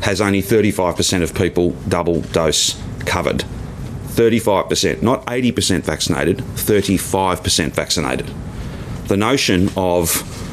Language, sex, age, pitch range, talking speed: Finnish, male, 30-49, 85-105 Hz, 95 wpm